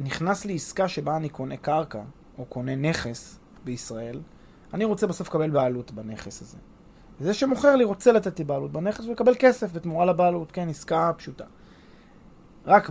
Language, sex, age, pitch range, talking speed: Hebrew, male, 20-39, 135-185 Hz, 160 wpm